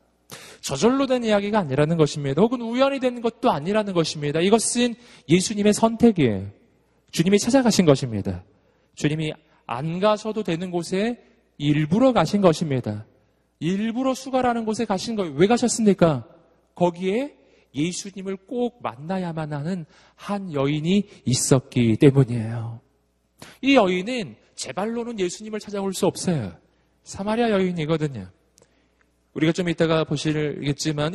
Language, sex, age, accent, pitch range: Korean, male, 30-49, native, 140-210 Hz